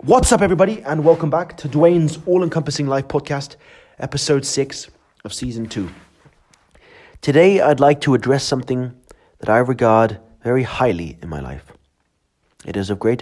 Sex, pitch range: male, 95-130 Hz